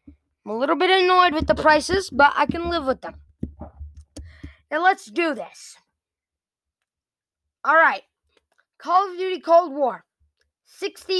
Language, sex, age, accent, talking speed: English, female, 20-39, American, 135 wpm